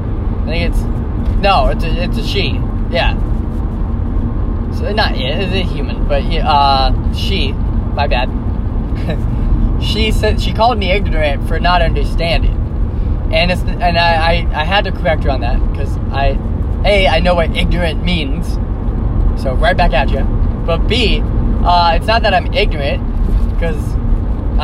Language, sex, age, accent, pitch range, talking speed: English, male, 20-39, American, 80-110 Hz, 160 wpm